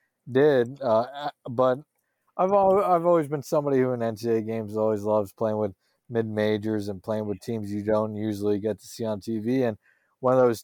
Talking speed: 190 wpm